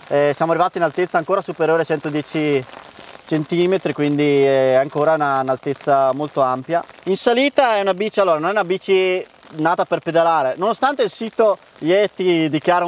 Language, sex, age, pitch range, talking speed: Italian, male, 20-39, 155-195 Hz, 165 wpm